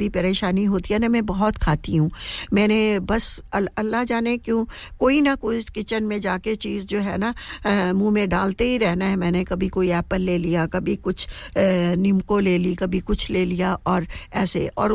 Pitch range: 185-220 Hz